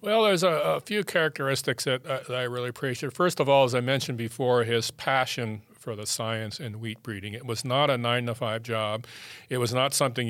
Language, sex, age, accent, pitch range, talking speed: English, male, 40-59, American, 115-135 Hz, 215 wpm